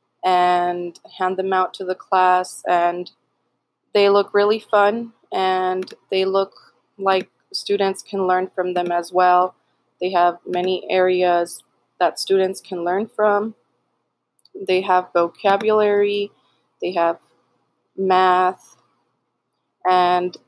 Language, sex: English, female